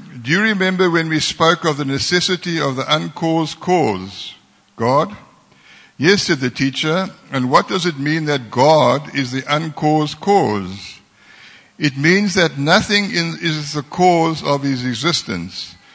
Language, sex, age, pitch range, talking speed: English, male, 60-79, 130-165 Hz, 145 wpm